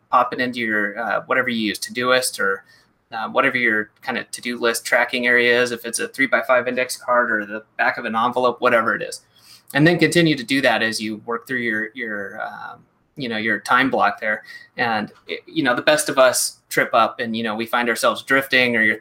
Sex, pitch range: male, 115-135 Hz